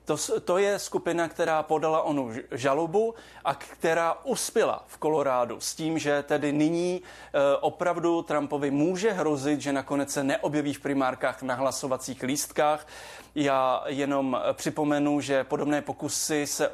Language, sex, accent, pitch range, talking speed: Czech, male, native, 140-170 Hz, 135 wpm